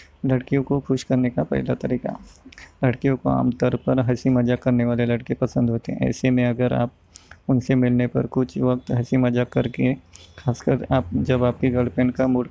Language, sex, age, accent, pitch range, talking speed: Hindi, male, 20-39, native, 115-125 Hz, 180 wpm